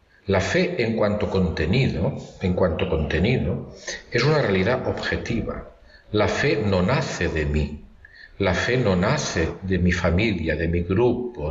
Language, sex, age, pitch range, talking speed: Spanish, male, 50-69, 90-115 Hz, 145 wpm